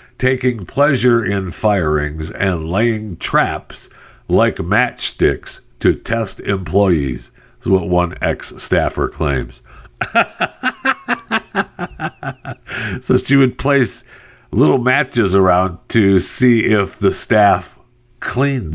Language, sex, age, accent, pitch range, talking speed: English, male, 60-79, American, 75-120 Hz, 100 wpm